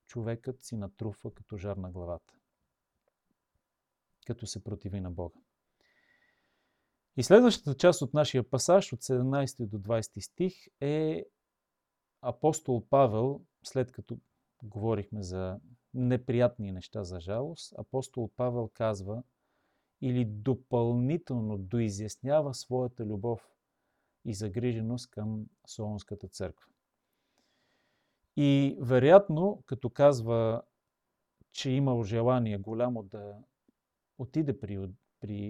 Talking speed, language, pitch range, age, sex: 100 wpm, Bulgarian, 105-135 Hz, 40-59, male